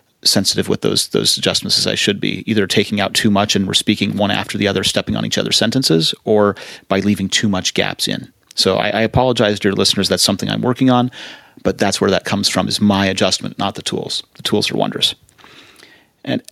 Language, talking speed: English, 225 wpm